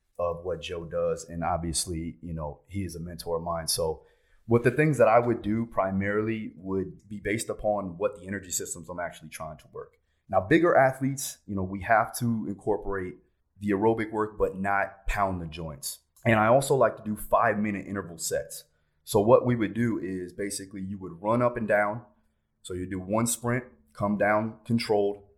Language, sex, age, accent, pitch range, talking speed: English, male, 30-49, American, 95-115 Hz, 200 wpm